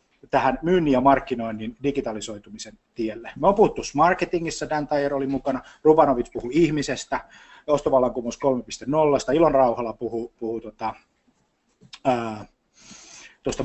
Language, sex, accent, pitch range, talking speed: Finnish, male, native, 125-170 Hz, 115 wpm